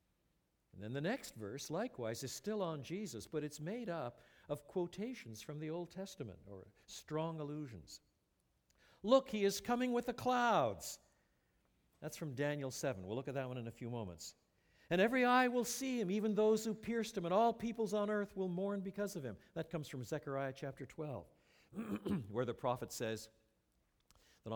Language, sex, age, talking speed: English, male, 60-79, 185 wpm